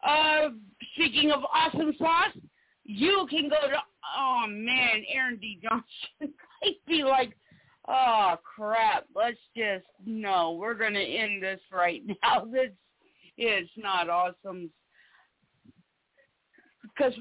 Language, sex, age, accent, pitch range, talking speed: English, female, 50-69, American, 230-305 Hz, 120 wpm